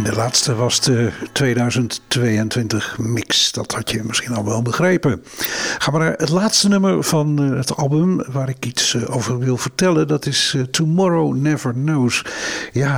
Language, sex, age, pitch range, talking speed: Dutch, male, 60-79, 130-160 Hz, 155 wpm